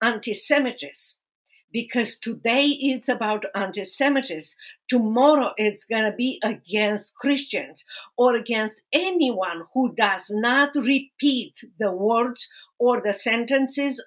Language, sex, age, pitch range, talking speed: English, female, 50-69, 215-270 Hz, 110 wpm